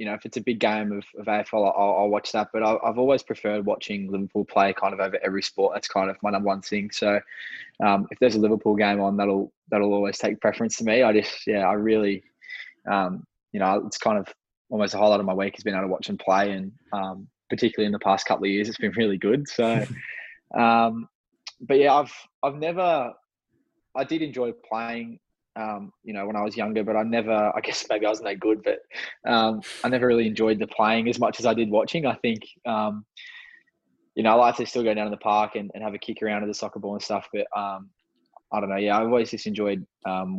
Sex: male